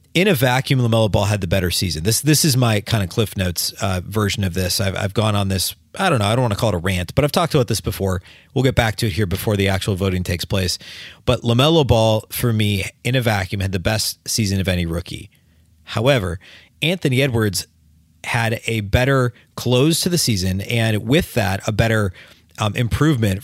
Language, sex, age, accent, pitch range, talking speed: English, male, 30-49, American, 95-120 Hz, 225 wpm